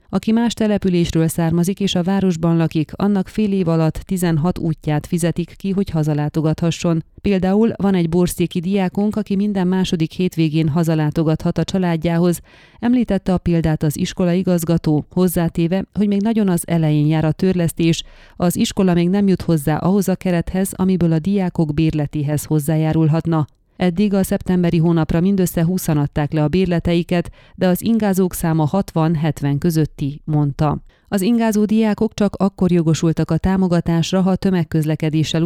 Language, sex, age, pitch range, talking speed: Hungarian, female, 30-49, 160-190 Hz, 145 wpm